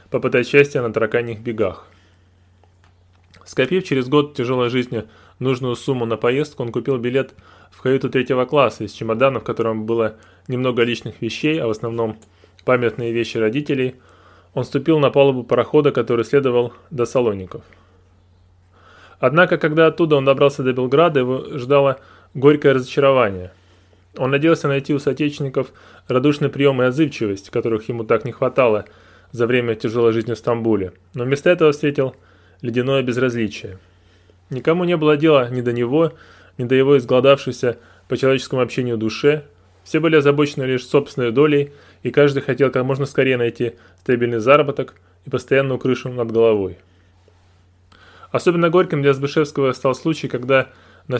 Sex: male